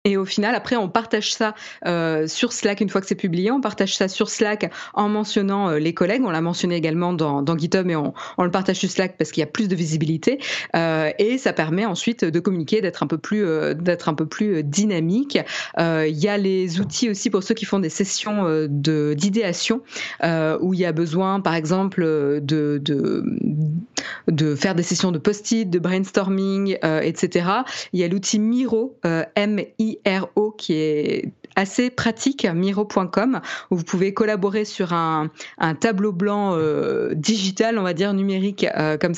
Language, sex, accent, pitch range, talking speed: French, female, French, 170-210 Hz, 200 wpm